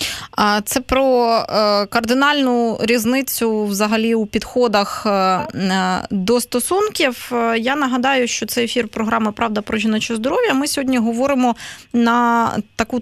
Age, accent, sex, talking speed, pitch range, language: 20-39, native, female, 110 wpm, 210-265 Hz, Ukrainian